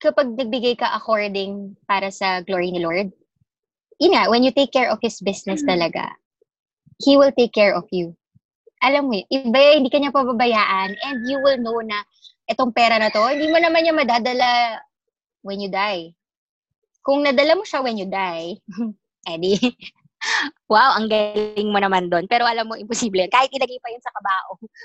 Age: 20-39